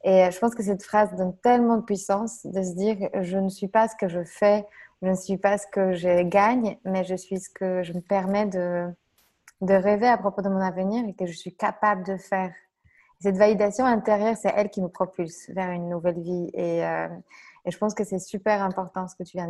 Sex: female